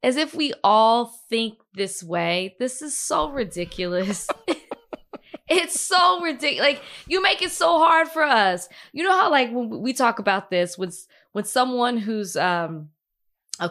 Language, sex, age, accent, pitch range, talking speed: English, female, 20-39, American, 190-295 Hz, 160 wpm